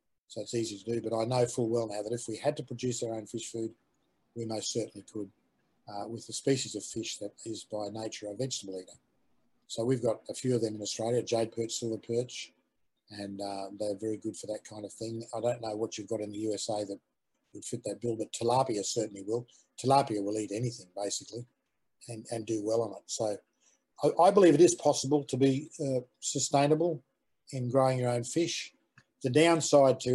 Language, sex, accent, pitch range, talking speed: English, male, Australian, 105-125 Hz, 215 wpm